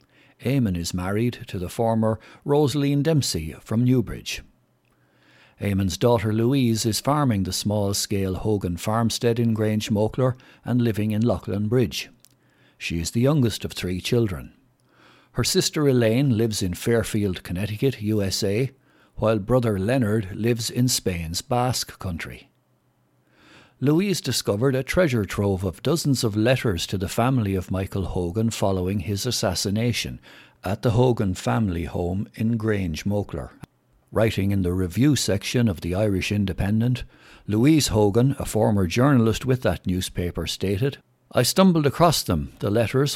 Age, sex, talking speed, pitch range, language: 60-79, male, 140 wpm, 95-125 Hz, English